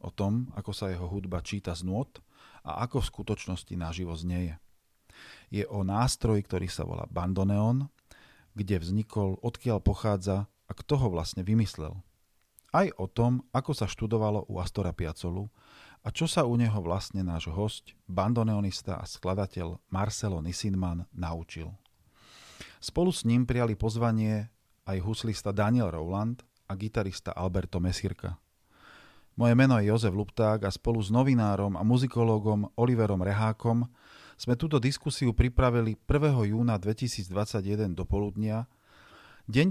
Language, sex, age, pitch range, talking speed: Slovak, male, 40-59, 95-115 Hz, 135 wpm